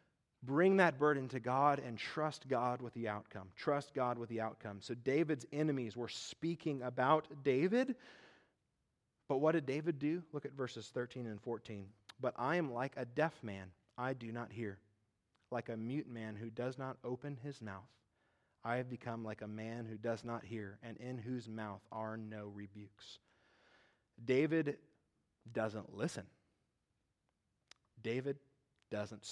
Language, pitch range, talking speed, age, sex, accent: English, 105-130 Hz, 160 wpm, 30-49, male, American